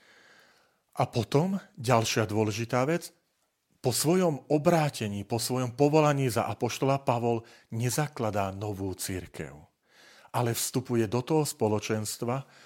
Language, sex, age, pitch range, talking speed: Slovak, male, 40-59, 110-125 Hz, 105 wpm